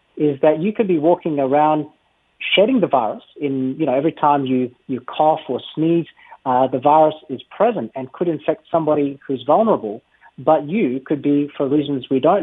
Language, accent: English, Australian